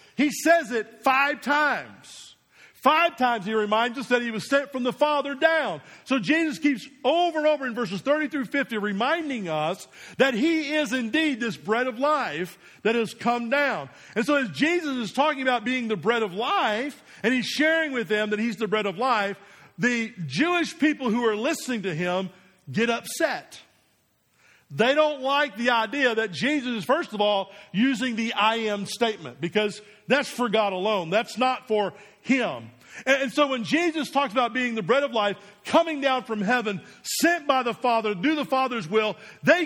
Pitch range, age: 220-295 Hz, 50-69